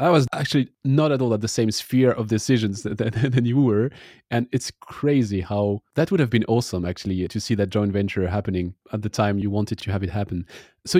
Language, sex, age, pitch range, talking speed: English, male, 30-49, 100-120 Hz, 235 wpm